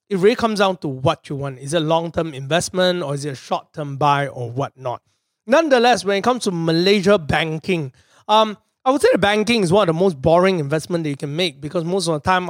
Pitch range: 165-215 Hz